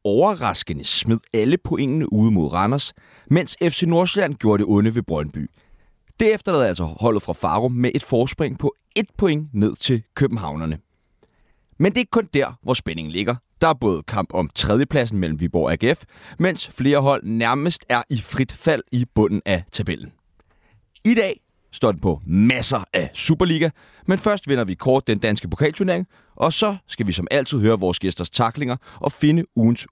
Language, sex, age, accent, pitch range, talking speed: Danish, male, 30-49, native, 95-145 Hz, 180 wpm